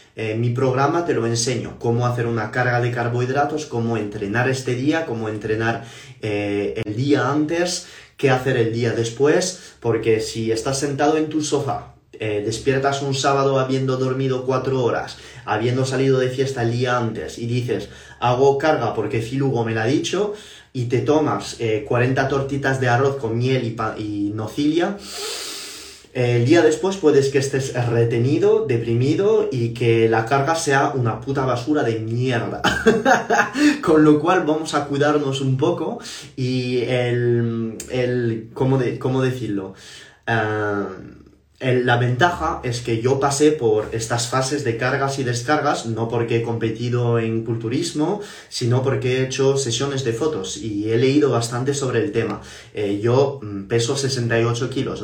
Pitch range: 115-140 Hz